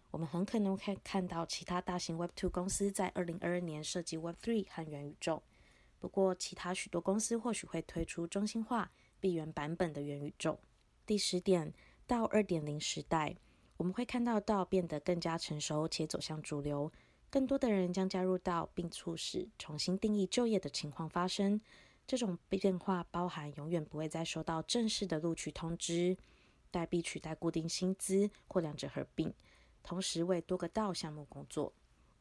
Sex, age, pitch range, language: female, 20-39, 160-190 Hz, Chinese